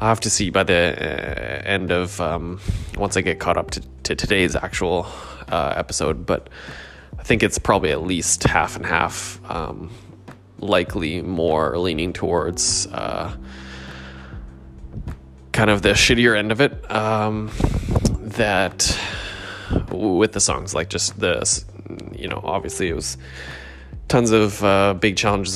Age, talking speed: 20-39, 145 wpm